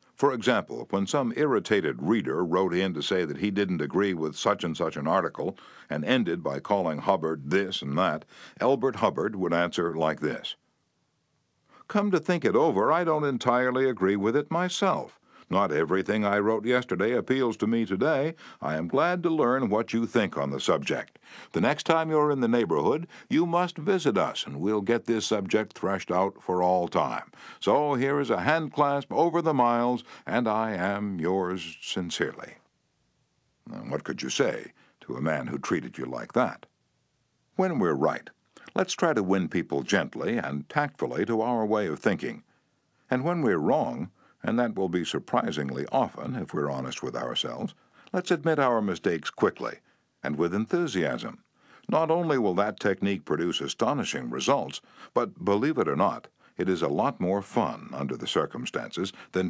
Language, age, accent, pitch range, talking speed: English, 60-79, American, 85-140 Hz, 175 wpm